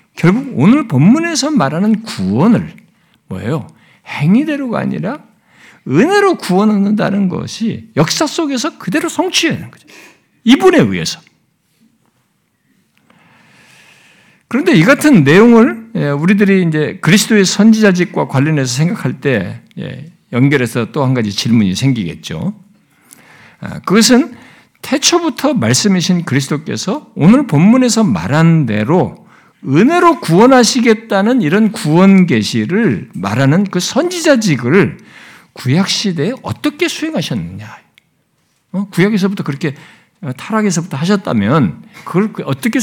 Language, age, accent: Korean, 60-79, native